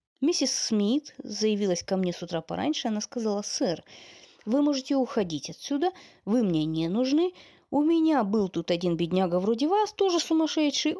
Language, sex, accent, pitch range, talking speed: Russian, female, native, 180-295 Hz, 160 wpm